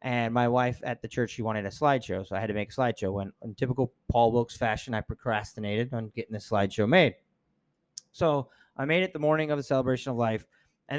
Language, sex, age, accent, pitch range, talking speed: English, male, 30-49, American, 110-145 Hz, 230 wpm